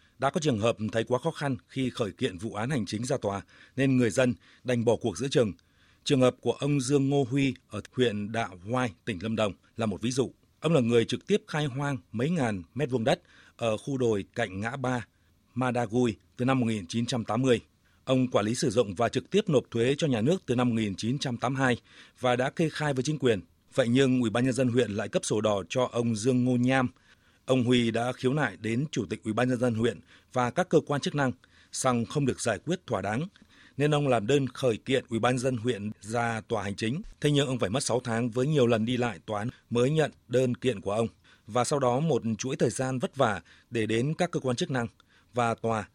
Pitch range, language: 110-135 Hz, Vietnamese